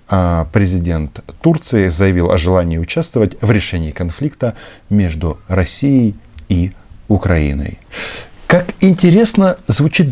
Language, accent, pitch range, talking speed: Russian, native, 85-120 Hz, 95 wpm